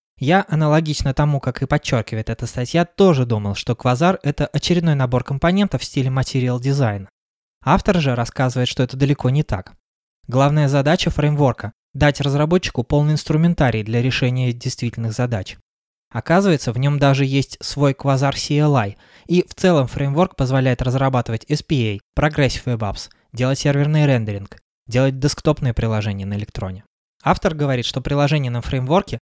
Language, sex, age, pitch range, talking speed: Russian, male, 20-39, 120-145 Hz, 145 wpm